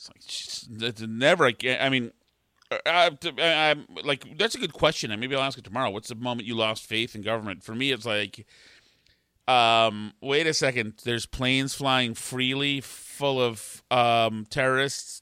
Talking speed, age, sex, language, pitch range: 165 wpm, 40-59, male, English, 125-175 Hz